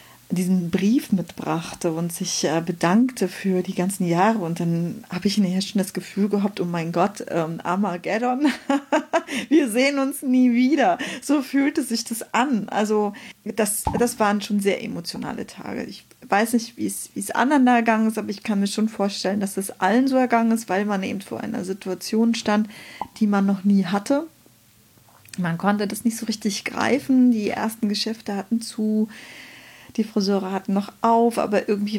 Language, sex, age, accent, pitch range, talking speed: German, female, 40-59, German, 195-230 Hz, 180 wpm